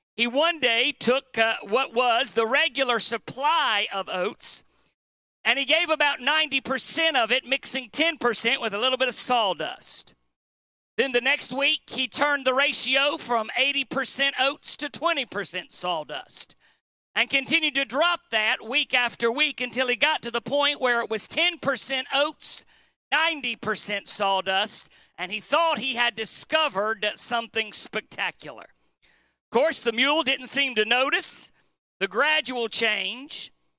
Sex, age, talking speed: male, 50-69, 140 wpm